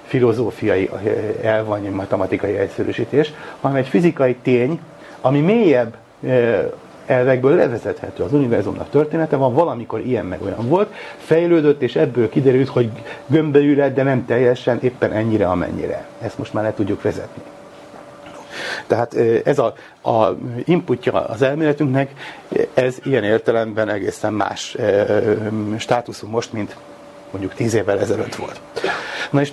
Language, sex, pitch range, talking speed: Hungarian, male, 110-145 Hz, 120 wpm